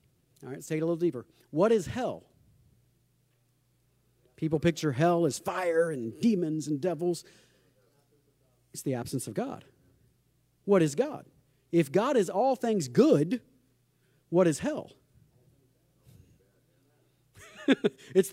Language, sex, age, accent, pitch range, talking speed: English, male, 40-59, American, 135-185 Hz, 130 wpm